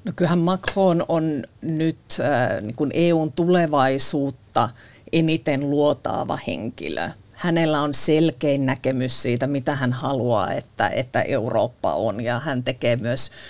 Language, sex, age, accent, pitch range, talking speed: Finnish, female, 40-59, native, 130-155 Hz, 110 wpm